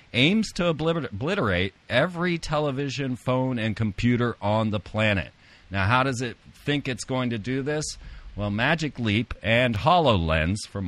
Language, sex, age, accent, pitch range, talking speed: English, male, 40-59, American, 100-135 Hz, 150 wpm